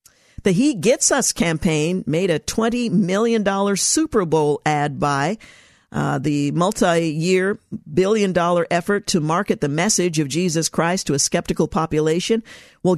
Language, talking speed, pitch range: English, 140 wpm, 155-200 Hz